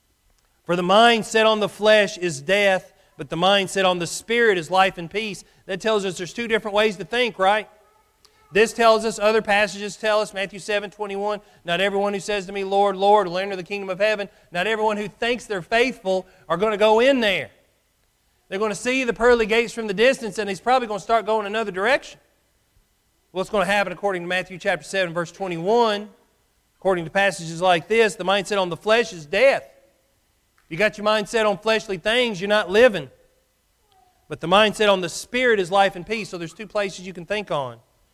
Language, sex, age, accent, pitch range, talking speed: English, male, 40-59, American, 180-215 Hz, 215 wpm